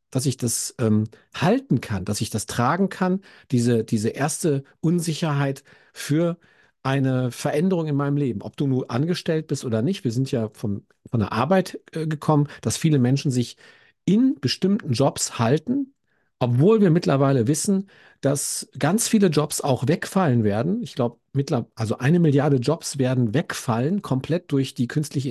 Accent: German